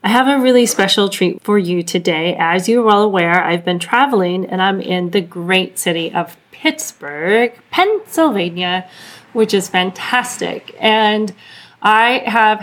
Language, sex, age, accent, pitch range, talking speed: English, female, 30-49, American, 190-240 Hz, 145 wpm